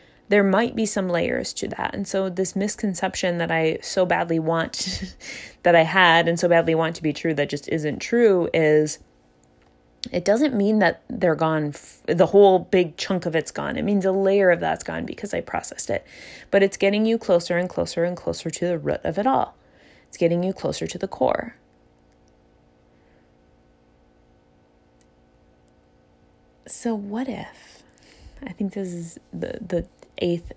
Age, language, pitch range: 20-39, English, 145-200 Hz